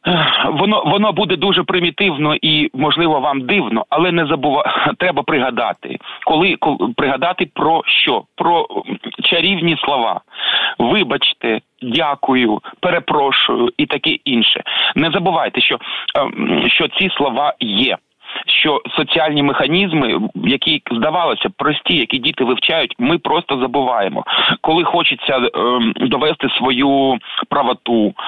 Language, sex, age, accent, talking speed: Ukrainian, male, 40-59, native, 110 wpm